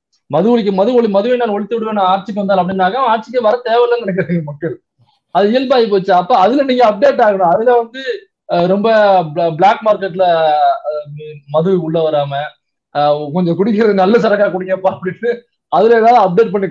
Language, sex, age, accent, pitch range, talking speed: Tamil, male, 20-39, native, 170-220 Hz, 150 wpm